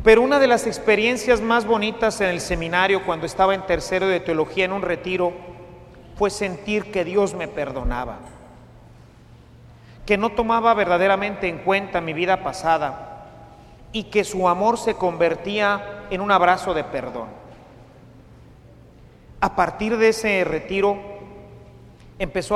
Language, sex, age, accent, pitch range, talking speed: Spanish, male, 40-59, Mexican, 165-210 Hz, 135 wpm